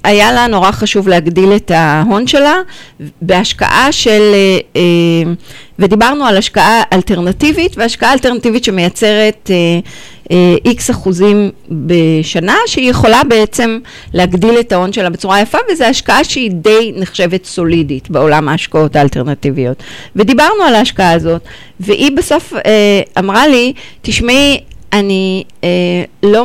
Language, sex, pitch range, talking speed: Hebrew, female, 180-225 Hz, 120 wpm